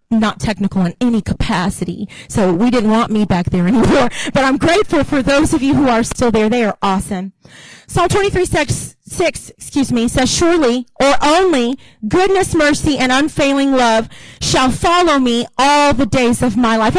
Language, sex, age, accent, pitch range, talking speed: English, female, 40-59, American, 235-330 Hz, 180 wpm